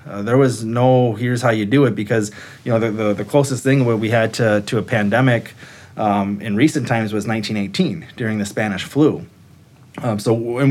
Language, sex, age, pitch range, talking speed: English, male, 20-39, 110-135 Hz, 200 wpm